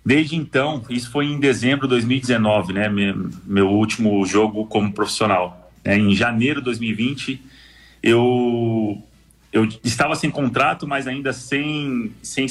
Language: Portuguese